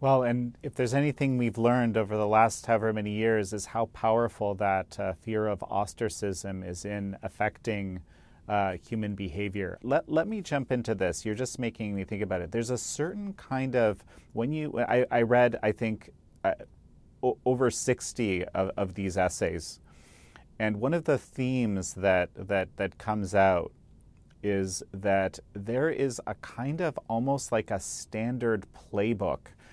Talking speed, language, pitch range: 165 wpm, English, 100-120 Hz